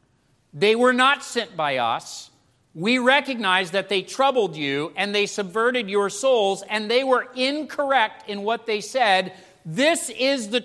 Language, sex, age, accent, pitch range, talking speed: English, male, 40-59, American, 150-210 Hz, 160 wpm